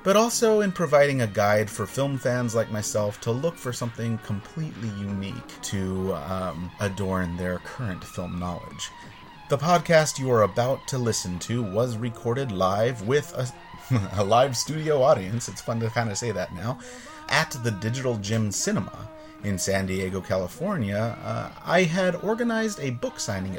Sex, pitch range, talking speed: male, 100-135 Hz, 165 wpm